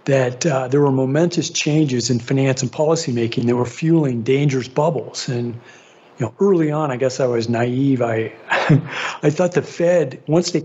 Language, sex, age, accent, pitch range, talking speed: English, male, 50-69, American, 125-150 Hz, 180 wpm